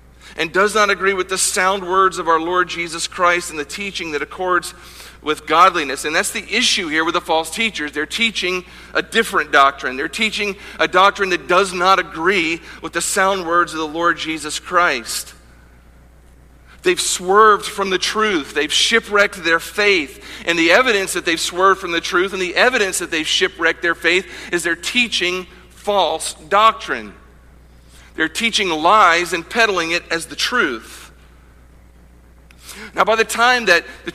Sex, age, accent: male, 50-69, American